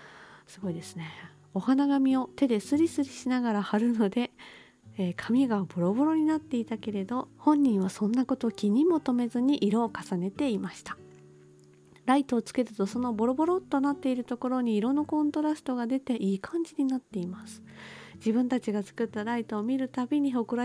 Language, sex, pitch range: Japanese, female, 195-260 Hz